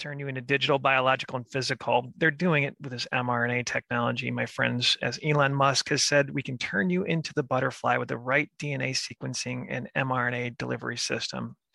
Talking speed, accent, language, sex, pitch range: 190 wpm, American, English, male, 125-145 Hz